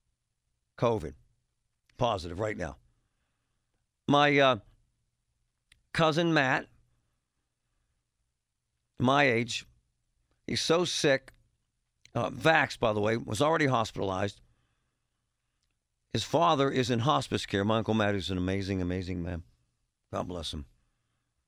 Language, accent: English, American